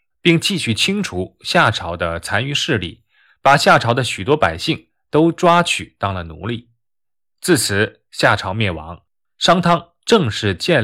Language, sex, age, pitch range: Chinese, male, 20-39, 100-170 Hz